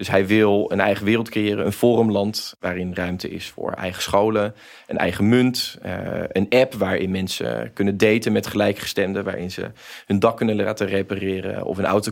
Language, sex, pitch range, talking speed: Dutch, male, 95-115 Hz, 180 wpm